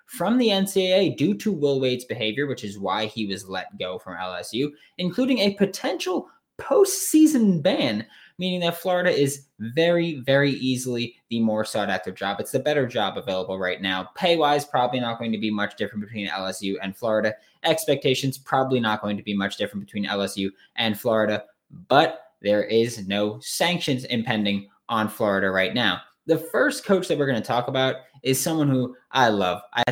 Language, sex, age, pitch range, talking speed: English, male, 20-39, 105-170 Hz, 180 wpm